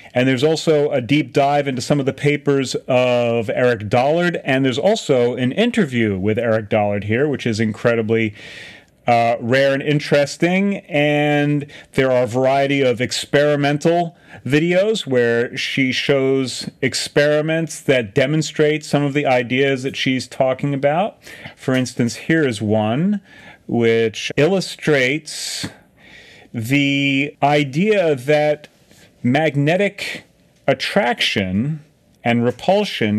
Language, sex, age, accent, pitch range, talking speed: English, male, 40-59, American, 125-150 Hz, 120 wpm